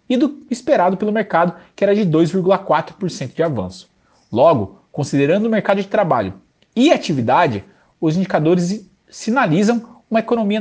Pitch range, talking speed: 150-210 Hz, 135 wpm